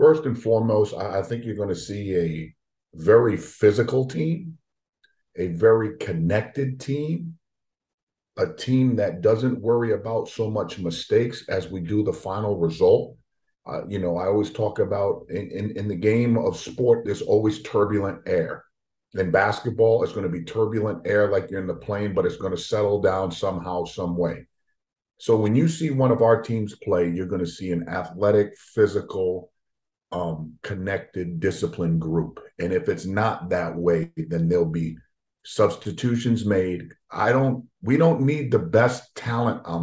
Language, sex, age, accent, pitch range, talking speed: English, male, 40-59, American, 85-115 Hz, 170 wpm